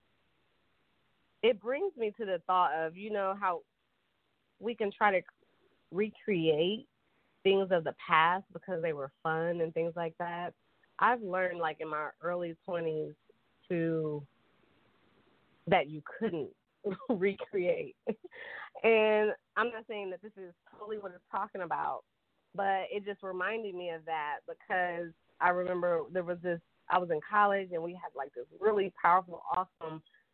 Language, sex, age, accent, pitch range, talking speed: English, female, 20-39, American, 165-210 Hz, 150 wpm